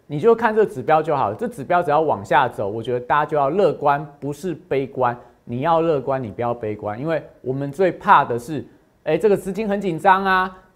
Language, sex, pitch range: Chinese, male, 130-185 Hz